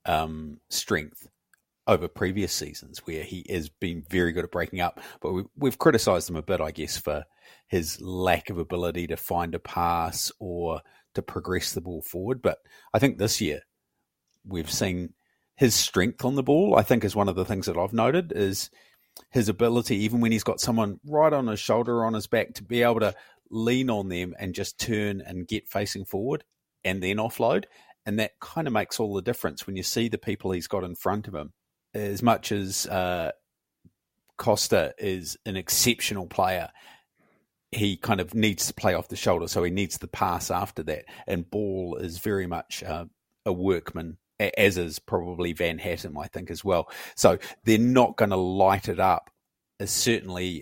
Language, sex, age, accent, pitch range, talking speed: English, male, 30-49, Australian, 90-110 Hz, 195 wpm